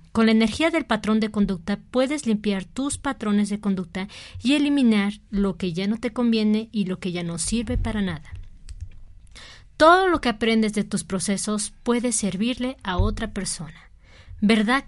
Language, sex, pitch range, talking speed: Spanish, female, 190-235 Hz, 170 wpm